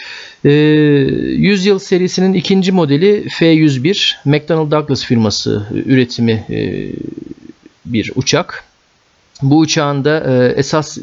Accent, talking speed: native, 85 wpm